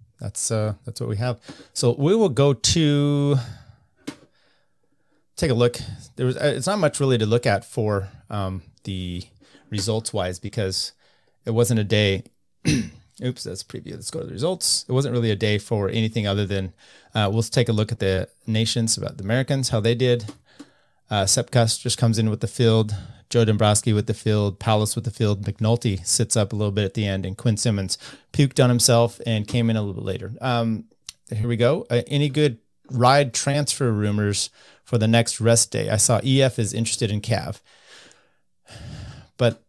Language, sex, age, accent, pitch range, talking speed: English, male, 30-49, American, 105-125 Hz, 190 wpm